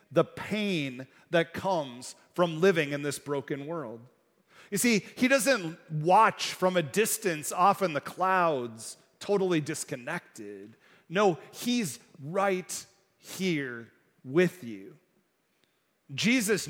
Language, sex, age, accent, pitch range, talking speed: English, male, 40-59, American, 145-200 Hz, 110 wpm